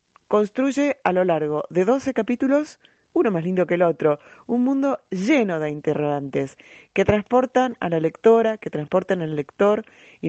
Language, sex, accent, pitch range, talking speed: Spanish, female, Argentinian, 150-200 Hz, 165 wpm